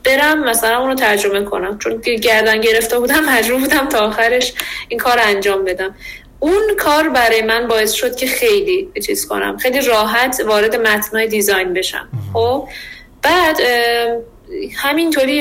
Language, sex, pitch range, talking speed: Persian, female, 220-295 Hz, 140 wpm